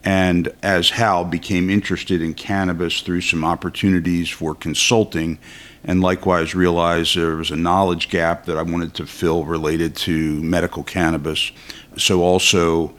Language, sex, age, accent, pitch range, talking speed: English, male, 50-69, American, 80-95 Hz, 145 wpm